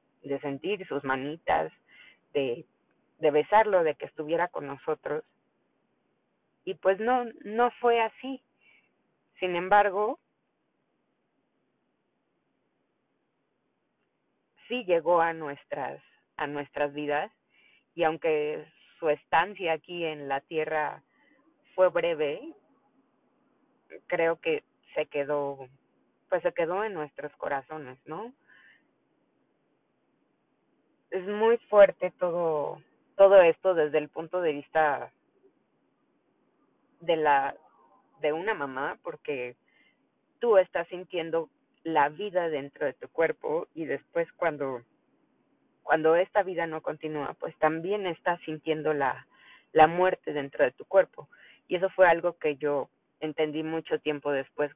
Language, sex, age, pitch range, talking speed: Spanish, female, 30-49, 150-230 Hz, 115 wpm